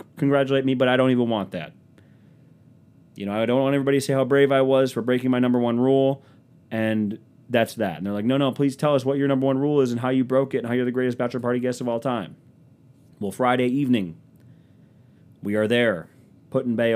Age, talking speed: 30-49, 235 wpm